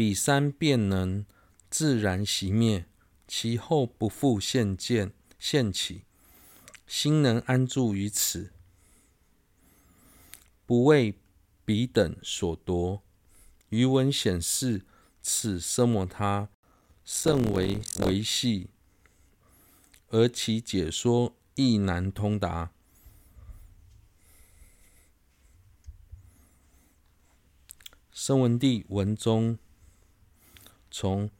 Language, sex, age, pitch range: Chinese, male, 50-69, 90-115 Hz